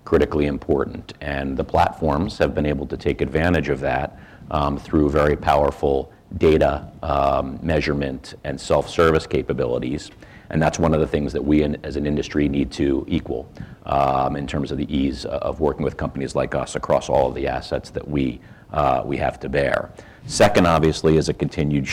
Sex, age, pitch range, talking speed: male, 40-59, 70-80 Hz, 180 wpm